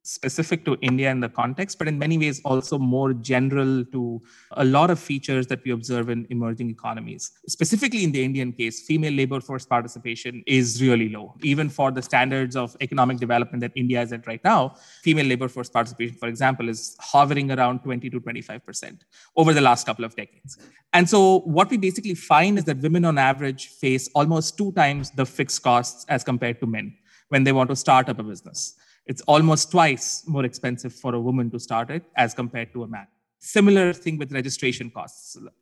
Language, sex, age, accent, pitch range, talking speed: English, male, 20-39, Indian, 125-155 Hz, 200 wpm